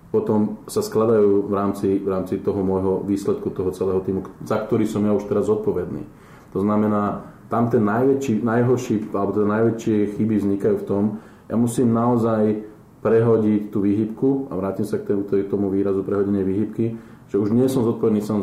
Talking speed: 180 wpm